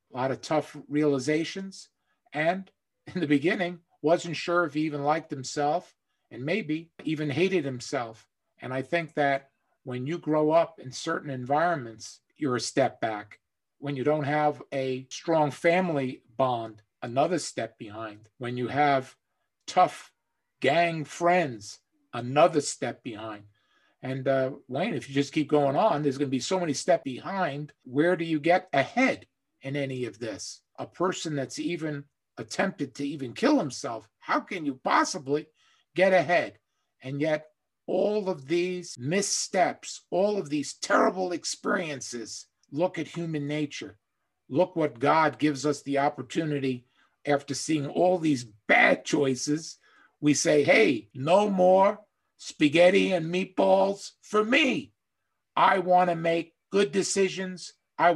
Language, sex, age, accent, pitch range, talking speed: English, male, 50-69, American, 140-180 Hz, 145 wpm